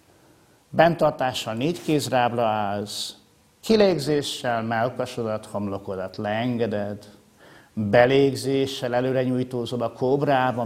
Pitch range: 105-135 Hz